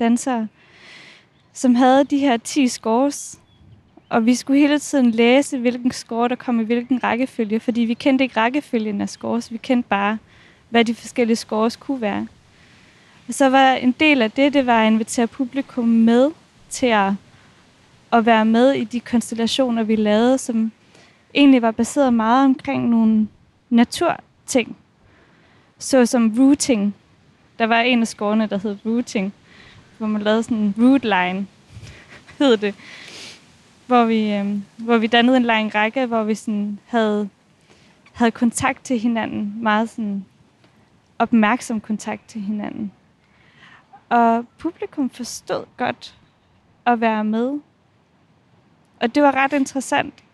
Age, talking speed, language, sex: 20-39, 135 wpm, English, female